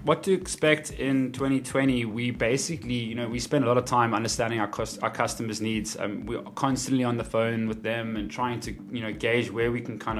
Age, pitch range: 20-39, 105-120 Hz